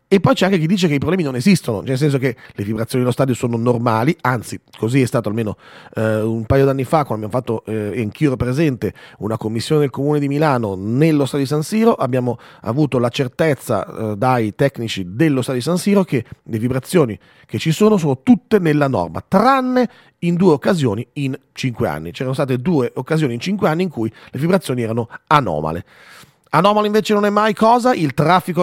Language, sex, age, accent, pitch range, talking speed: Italian, male, 30-49, native, 125-180 Hz, 205 wpm